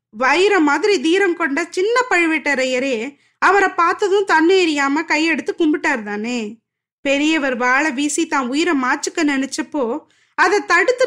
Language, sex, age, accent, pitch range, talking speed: Tamil, female, 20-39, native, 270-365 Hz, 120 wpm